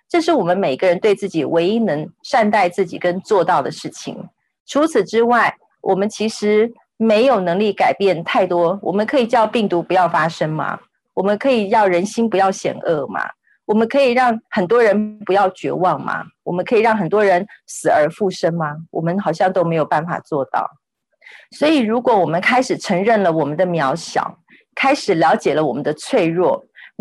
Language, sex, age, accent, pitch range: Chinese, female, 40-59, native, 175-240 Hz